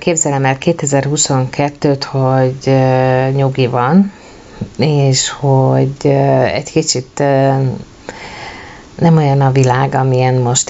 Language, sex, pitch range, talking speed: Hungarian, female, 130-155 Hz, 90 wpm